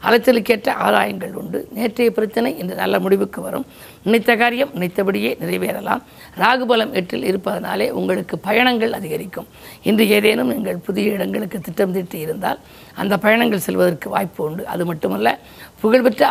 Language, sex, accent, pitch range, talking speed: Tamil, female, native, 190-230 Hz, 130 wpm